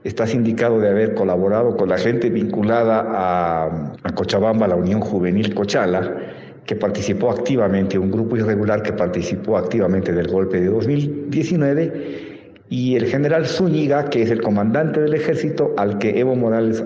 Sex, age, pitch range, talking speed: male, 50-69, 95-115 Hz, 155 wpm